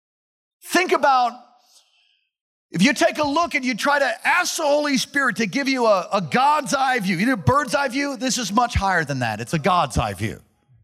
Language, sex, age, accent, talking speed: English, male, 40-59, American, 225 wpm